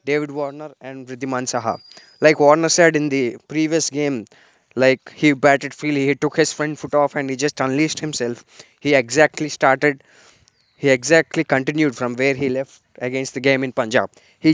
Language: Telugu